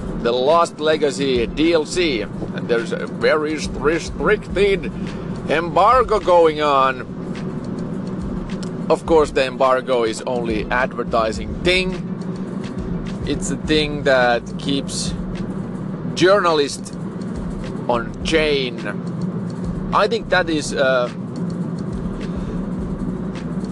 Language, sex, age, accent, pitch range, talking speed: English, male, 30-49, Finnish, 170-190 Hz, 85 wpm